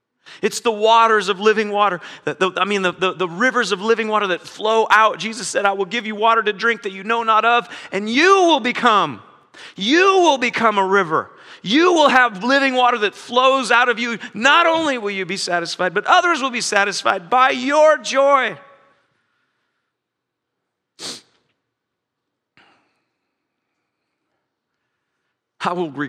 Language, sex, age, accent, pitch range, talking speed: English, male, 40-59, American, 200-255 Hz, 150 wpm